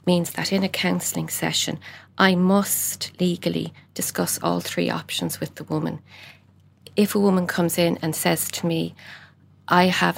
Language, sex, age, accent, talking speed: English, female, 40-59, Irish, 160 wpm